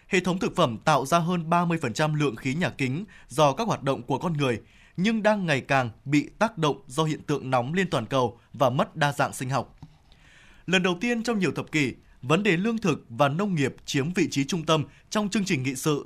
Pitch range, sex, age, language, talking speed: 140-185 Hz, male, 20-39, Vietnamese, 235 wpm